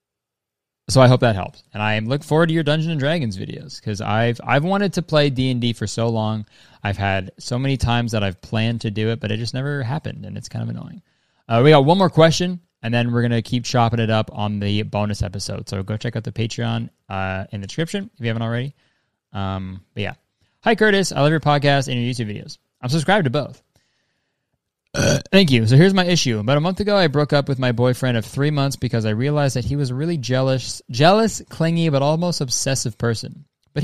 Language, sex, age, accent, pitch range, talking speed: English, male, 20-39, American, 110-145 Hz, 230 wpm